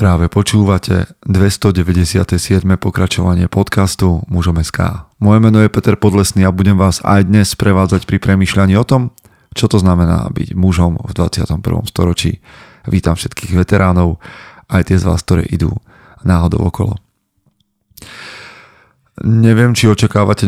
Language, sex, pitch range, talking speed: Slovak, male, 90-105 Hz, 125 wpm